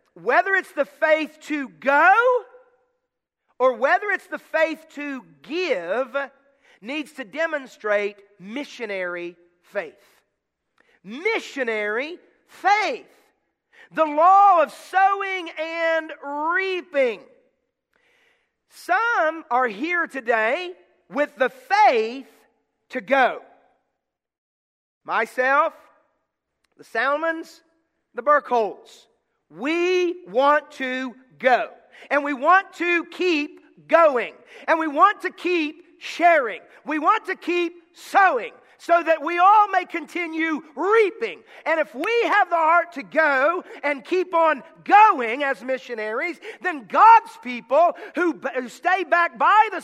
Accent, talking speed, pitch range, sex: American, 110 wpm, 285-375 Hz, male